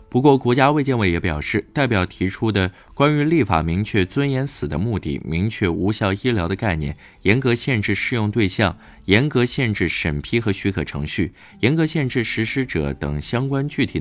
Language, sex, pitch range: Chinese, male, 85-130 Hz